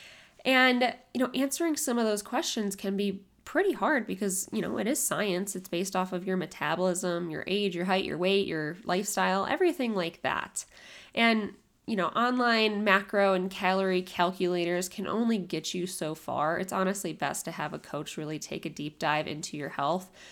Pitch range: 175-230 Hz